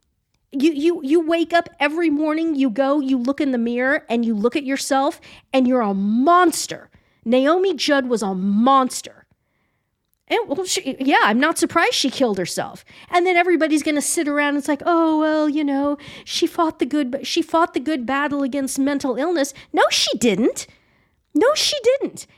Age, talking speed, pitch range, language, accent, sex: 40-59, 180 wpm, 245-335 Hz, English, American, female